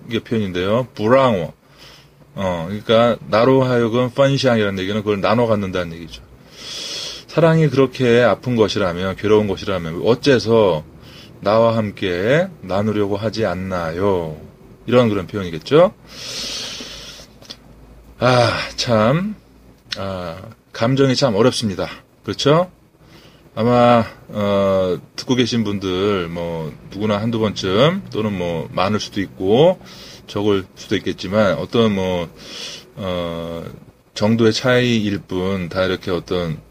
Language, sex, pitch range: Korean, male, 95-120 Hz